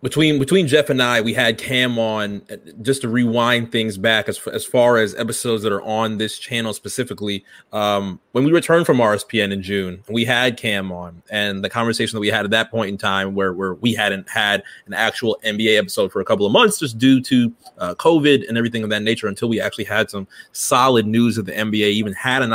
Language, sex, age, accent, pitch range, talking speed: English, male, 30-49, American, 105-130 Hz, 225 wpm